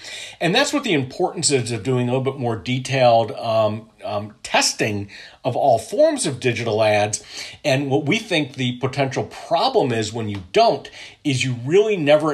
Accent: American